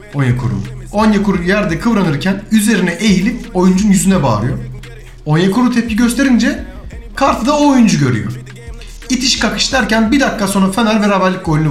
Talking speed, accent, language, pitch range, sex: 130 wpm, native, Turkish, 155-220 Hz, male